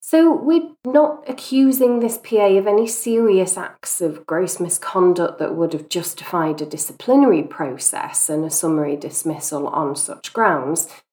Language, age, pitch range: English, 30-49, 155-215 Hz